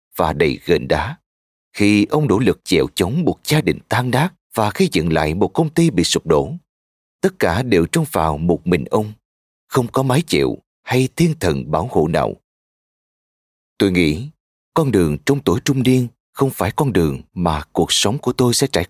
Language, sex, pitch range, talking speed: Vietnamese, male, 80-130 Hz, 195 wpm